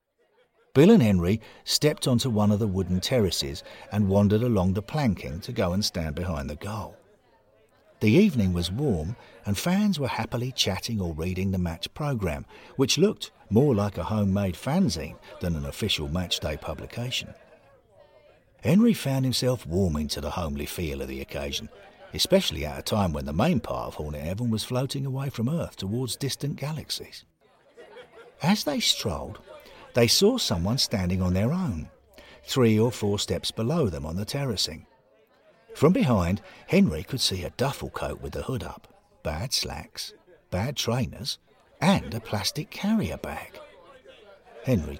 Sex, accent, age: male, British, 50-69